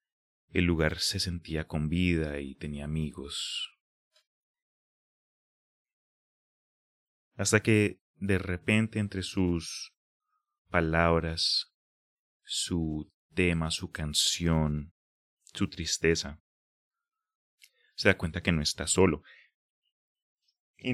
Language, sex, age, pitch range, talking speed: Spanish, male, 30-49, 80-100 Hz, 85 wpm